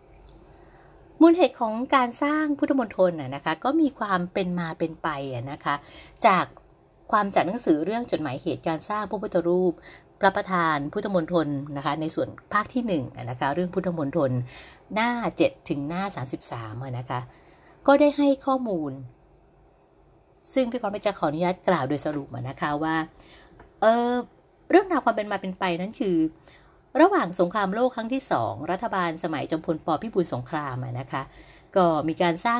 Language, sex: Thai, female